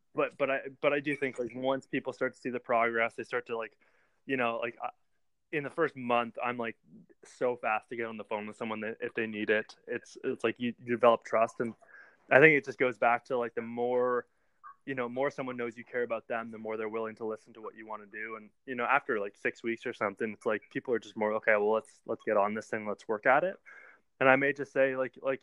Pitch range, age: 115-125 Hz, 20-39